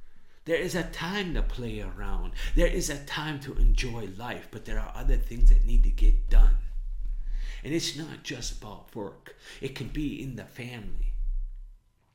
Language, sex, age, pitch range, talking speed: English, male, 50-69, 105-140 Hz, 180 wpm